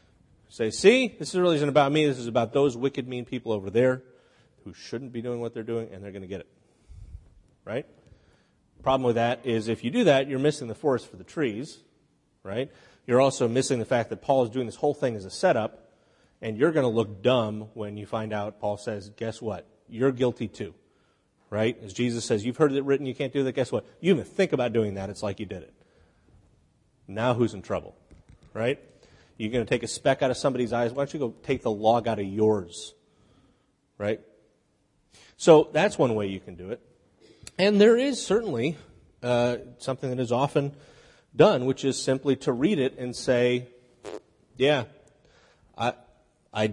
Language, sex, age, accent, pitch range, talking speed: English, male, 30-49, American, 110-130 Hz, 205 wpm